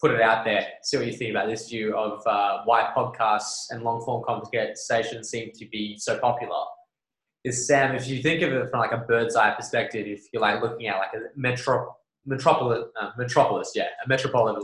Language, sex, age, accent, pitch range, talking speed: English, male, 20-39, Australian, 115-140 Hz, 205 wpm